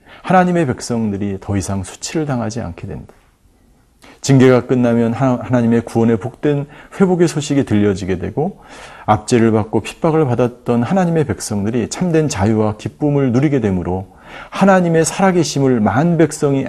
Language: Korean